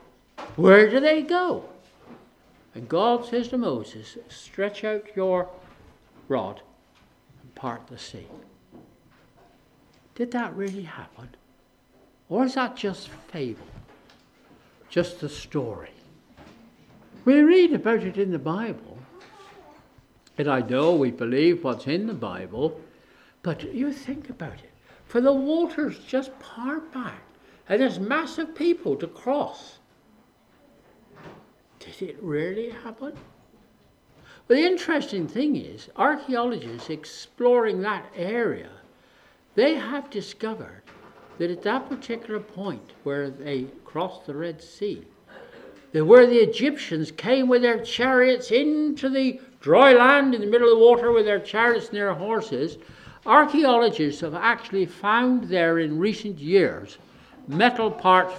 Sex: male